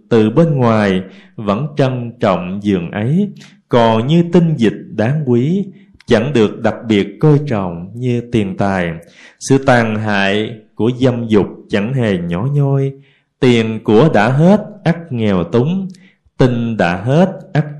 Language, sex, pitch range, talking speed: Vietnamese, male, 110-165 Hz, 150 wpm